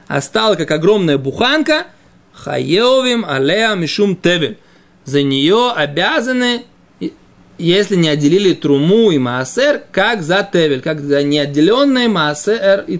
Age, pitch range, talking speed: 20-39, 160-240 Hz, 115 wpm